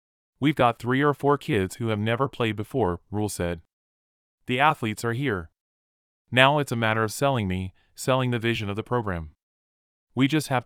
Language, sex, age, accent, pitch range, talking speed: English, male, 30-49, American, 95-130 Hz, 185 wpm